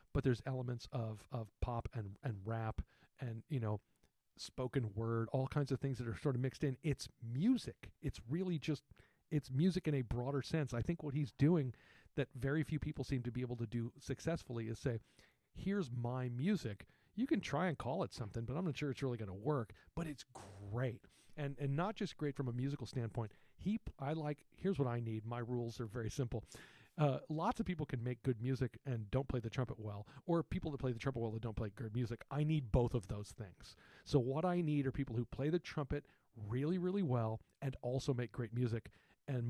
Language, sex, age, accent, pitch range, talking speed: English, male, 40-59, American, 115-145 Hz, 225 wpm